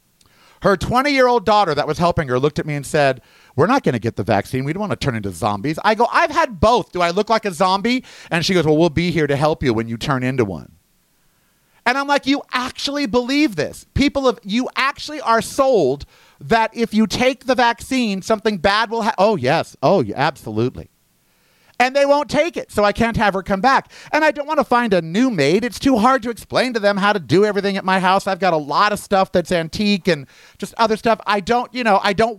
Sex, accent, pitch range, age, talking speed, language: male, American, 170-240 Hz, 40-59, 245 wpm, English